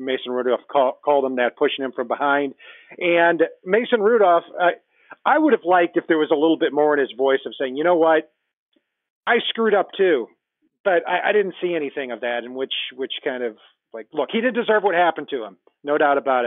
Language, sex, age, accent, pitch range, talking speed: English, male, 40-59, American, 140-185 Hz, 225 wpm